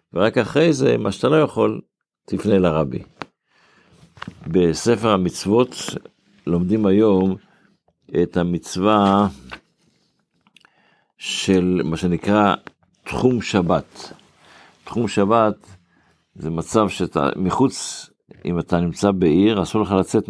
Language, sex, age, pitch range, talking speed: Hebrew, male, 60-79, 85-105 Hz, 100 wpm